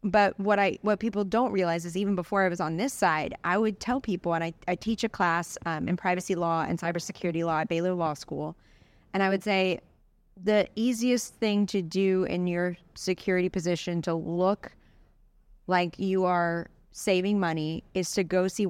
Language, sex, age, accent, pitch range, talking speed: English, female, 30-49, American, 170-200 Hz, 195 wpm